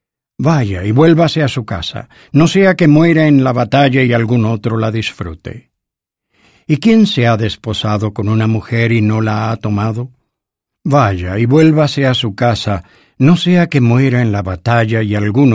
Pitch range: 105-135 Hz